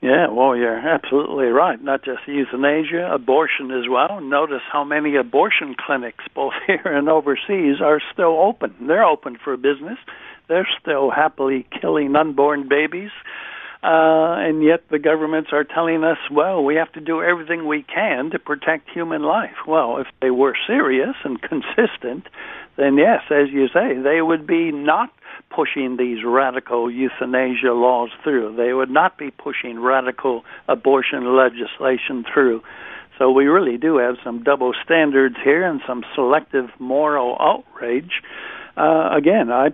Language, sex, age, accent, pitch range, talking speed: English, male, 60-79, American, 130-155 Hz, 155 wpm